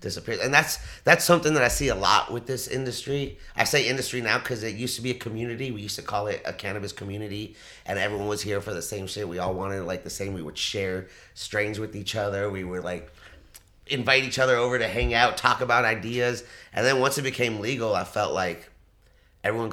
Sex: male